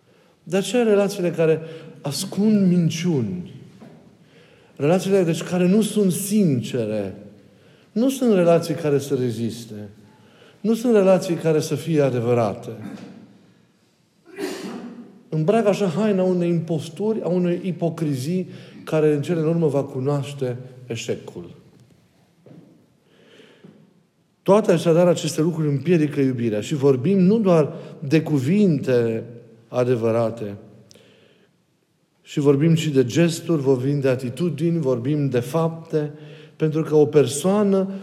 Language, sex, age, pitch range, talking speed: Romanian, male, 50-69, 135-180 Hz, 110 wpm